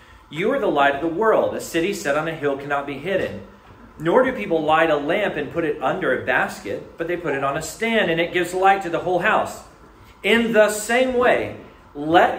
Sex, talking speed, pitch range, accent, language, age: male, 230 wpm, 140-195 Hz, American, English, 40-59